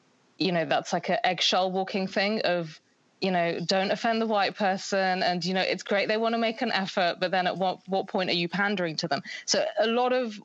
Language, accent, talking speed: English, British, 240 wpm